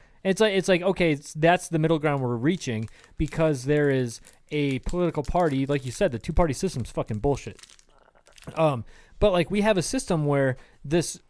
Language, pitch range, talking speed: English, 135-165 Hz, 190 wpm